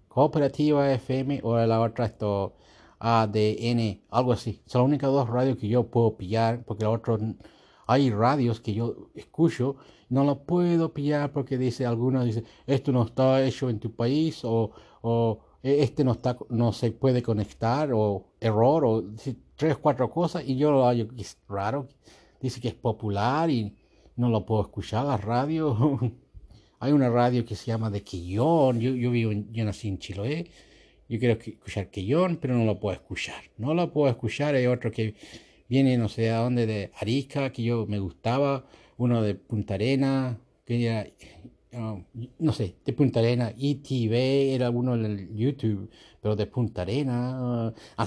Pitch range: 110-135 Hz